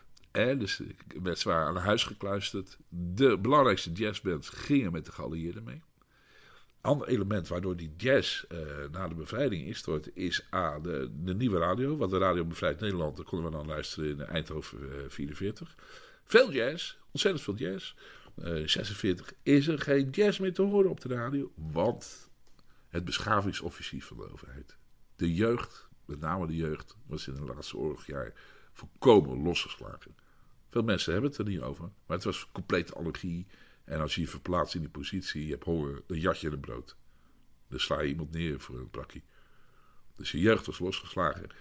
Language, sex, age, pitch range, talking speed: Dutch, male, 50-69, 80-115 Hz, 180 wpm